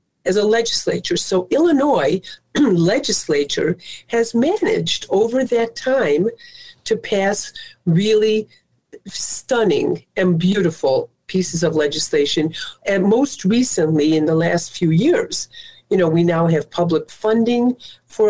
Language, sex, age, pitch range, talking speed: English, female, 50-69, 175-230 Hz, 120 wpm